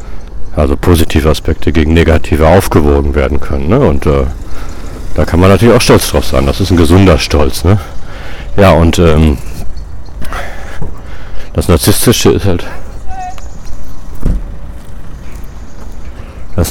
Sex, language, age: male, German, 60-79